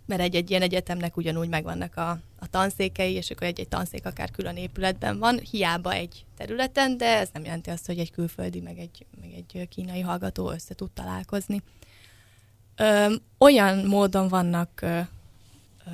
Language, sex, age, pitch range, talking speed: Hungarian, female, 20-39, 155-200 Hz, 160 wpm